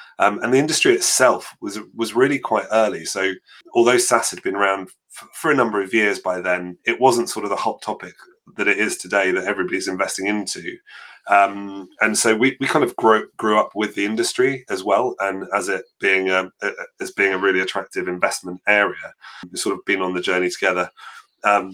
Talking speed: 210 wpm